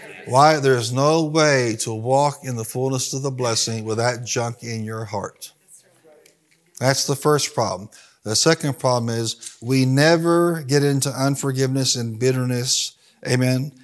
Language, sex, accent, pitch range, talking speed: English, male, American, 125-160 Hz, 145 wpm